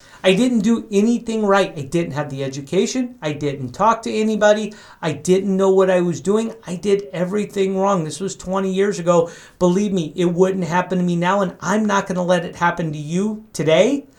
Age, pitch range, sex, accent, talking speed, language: 50-69, 175-220 Hz, male, American, 210 wpm, English